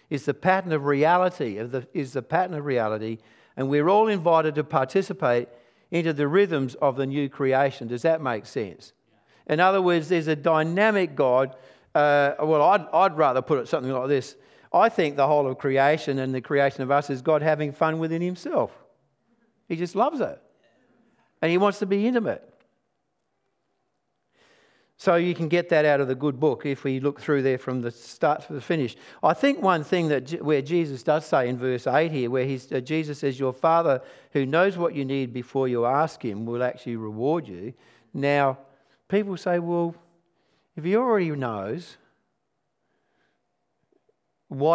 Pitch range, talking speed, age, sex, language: 130-175 Hz, 180 wpm, 50-69, male, English